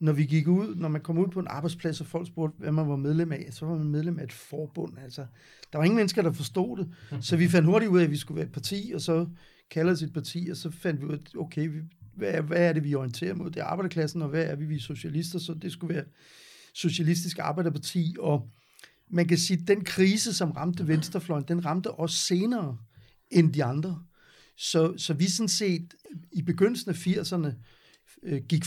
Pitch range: 155-180 Hz